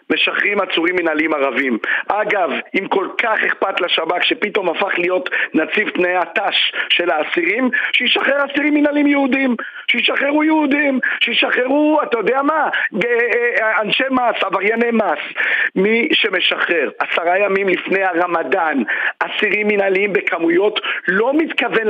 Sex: male